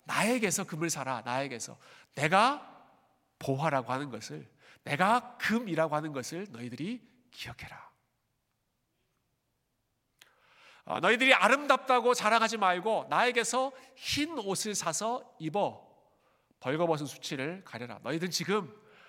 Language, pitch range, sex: Korean, 140-200 Hz, male